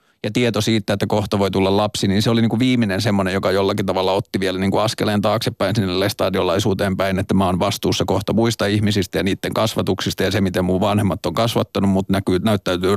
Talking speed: 205 wpm